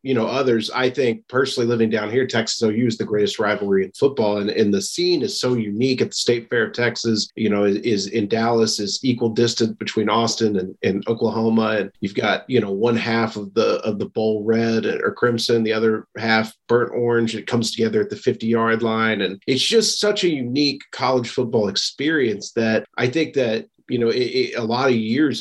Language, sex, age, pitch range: English, male, 40-59, 110-125 Hz